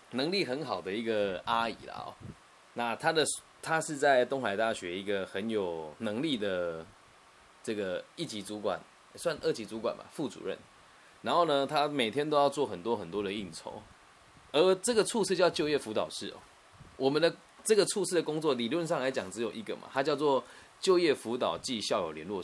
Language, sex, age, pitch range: Chinese, male, 20-39, 110-150 Hz